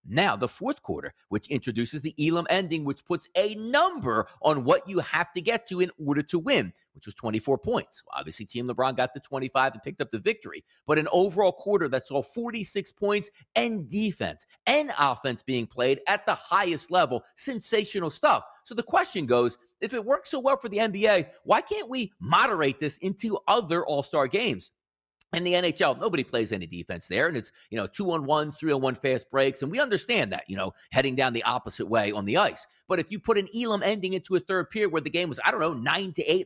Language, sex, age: English, male, 40-59